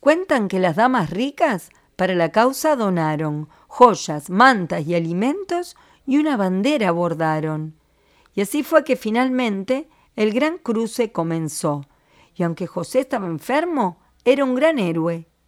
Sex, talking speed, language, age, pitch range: female, 135 wpm, Spanish, 40-59, 170-260 Hz